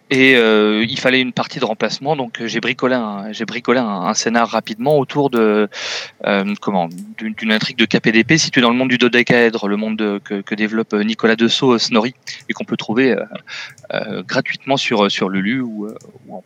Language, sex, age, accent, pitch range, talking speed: French, male, 30-49, French, 110-135 Hz, 195 wpm